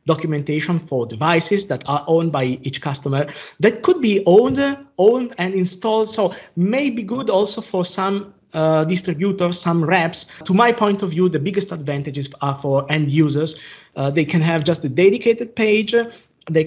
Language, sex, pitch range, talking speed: English, male, 150-190 Hz, 175 wpm